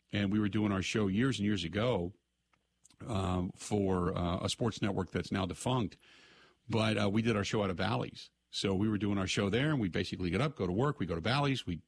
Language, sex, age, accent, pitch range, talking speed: English, male, 50-69, American, 95-110 Hz, 245 wpm